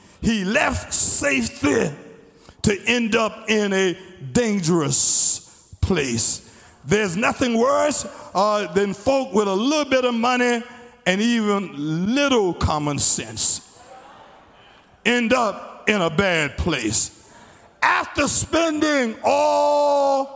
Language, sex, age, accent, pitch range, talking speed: English, male, 60-79, American, 185-260 Hz, 105 wpm